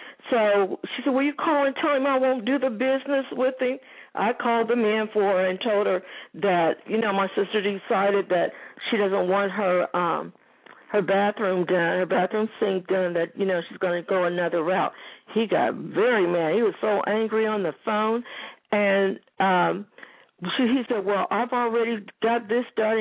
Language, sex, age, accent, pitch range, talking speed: English, female, 60-79, American, 185-235 Hz, 190 wpm